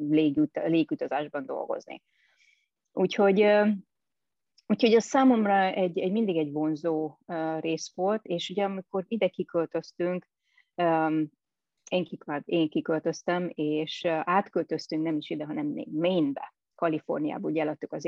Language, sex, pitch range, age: Hungarian, female, 160-210 Hz, 30-49